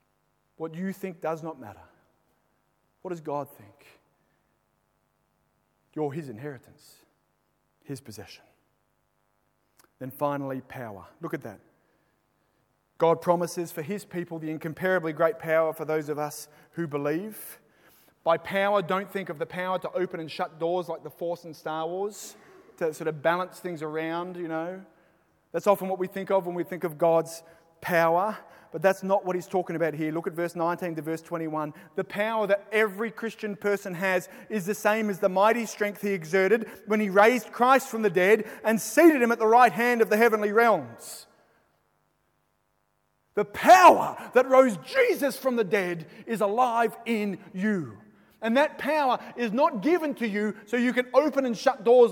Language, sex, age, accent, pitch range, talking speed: English, male, 30-49, Australian, 165-220 Hz, 175 wpm